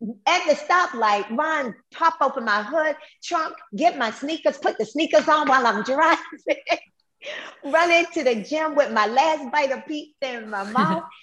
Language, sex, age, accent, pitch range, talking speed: English, female, 40-59, American, 180-280 Hz, 170 wpm